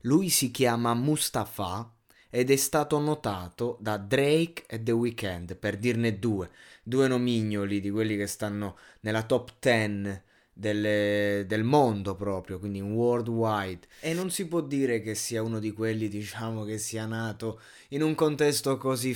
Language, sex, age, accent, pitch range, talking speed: Italian, male, 20-39, native, 110-145 Hz, 150 wpm